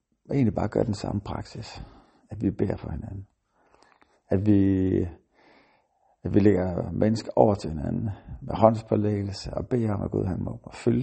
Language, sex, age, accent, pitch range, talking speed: Danish, male, 60-79, native, 95-110 Hz, 170 wpm